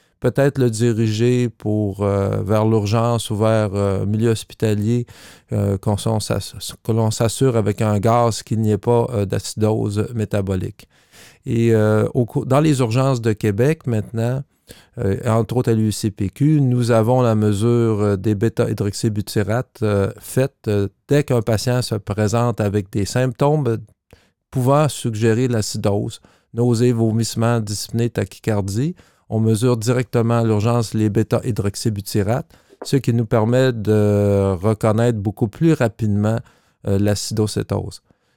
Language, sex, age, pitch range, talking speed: French, male, 50-69, 105-120 Hz, 130 wpm